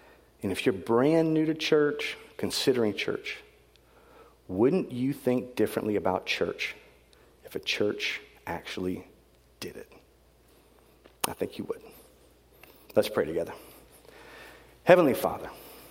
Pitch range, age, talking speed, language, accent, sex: 115-155 Hz, 40-59, 115 wpm, English, American, male